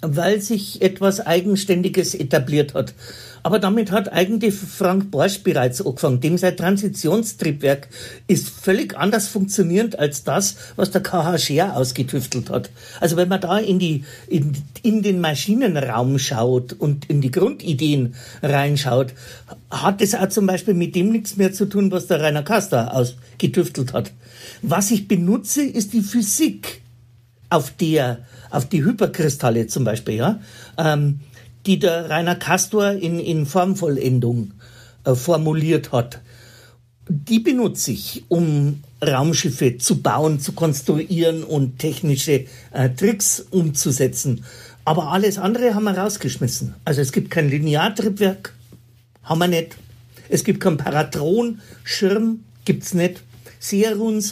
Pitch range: 130-195 Hz